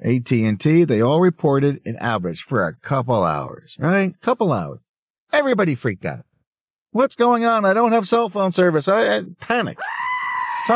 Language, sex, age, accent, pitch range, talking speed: English, male, 50-69, American, 120-185 Hz, 160 wpm